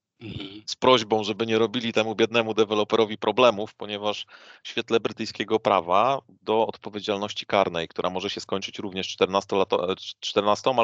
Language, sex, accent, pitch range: Polish, male, native, 100-115 Hz